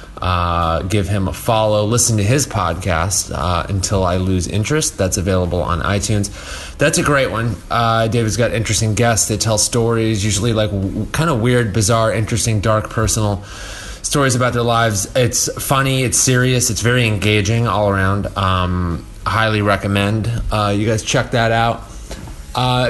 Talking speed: 160 wpm